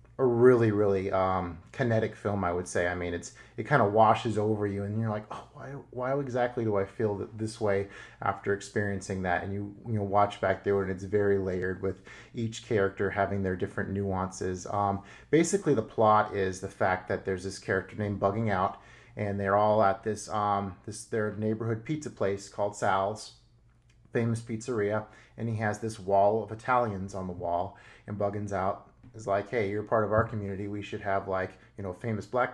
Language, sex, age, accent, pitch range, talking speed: English, male, 30-49, American, 100-115 Hz, 205 wpm